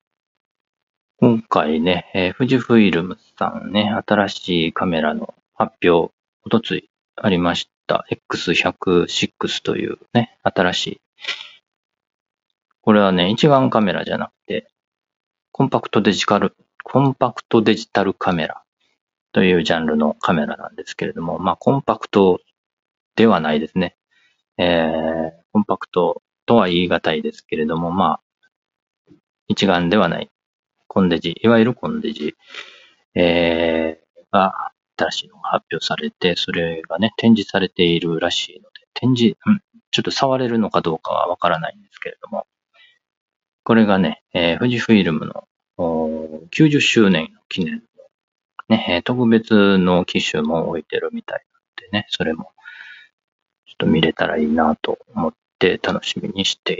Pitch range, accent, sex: 85-130 Hz, native, male